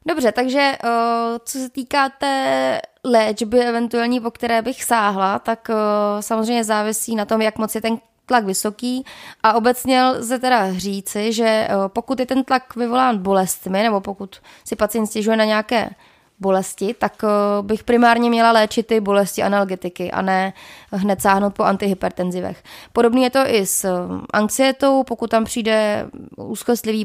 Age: 20-39